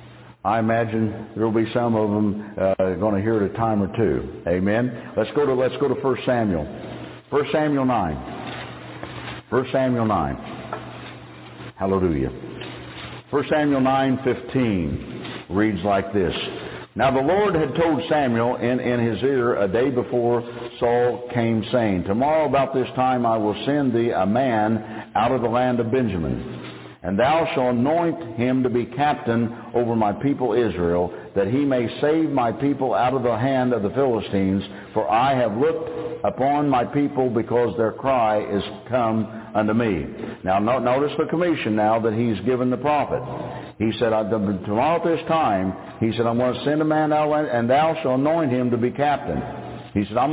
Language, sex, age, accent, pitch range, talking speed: English, male, 60-79, American, 105-135 Hz, 170 wpm